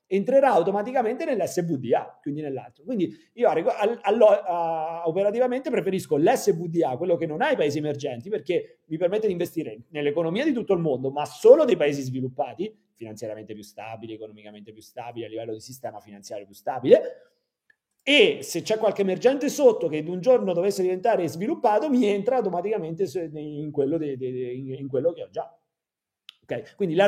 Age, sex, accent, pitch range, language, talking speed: 40-59, male, native, 130-200 Hz, Italian, 170 wpm